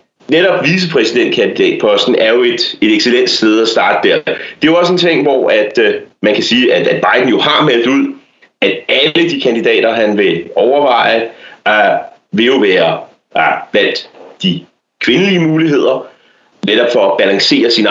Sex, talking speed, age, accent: male, 155 wpm, 30-49, Danish